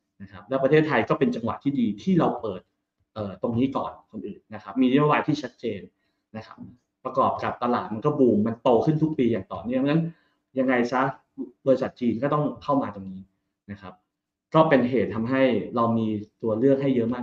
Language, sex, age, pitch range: Thai, male, 20-39, 110-145 Hz